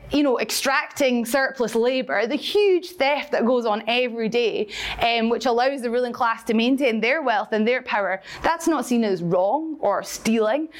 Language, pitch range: English, 215-270 Hz